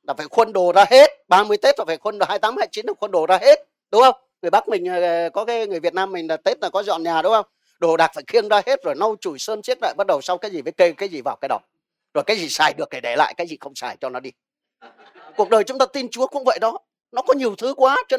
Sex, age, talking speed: male, 30-49, 305 wpm